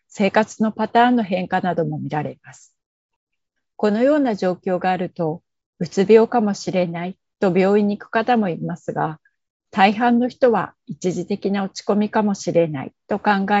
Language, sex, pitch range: Japanese, female, 180-215 Hz